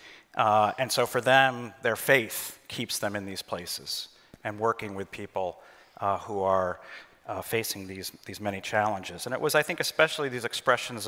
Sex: male